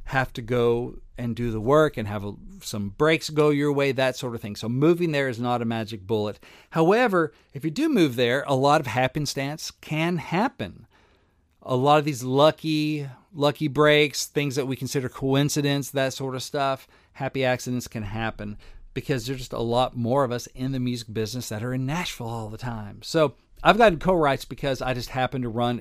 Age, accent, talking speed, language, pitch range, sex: 40-59, American, 200 wpm, English, 120-155 Hz, male